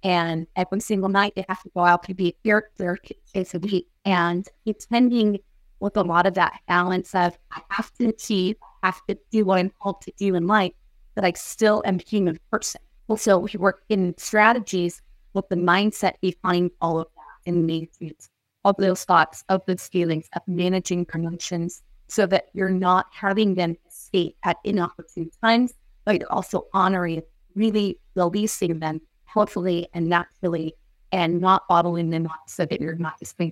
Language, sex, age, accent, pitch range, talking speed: English, female, 30-49, American, 175-205 Hz, 180 wpm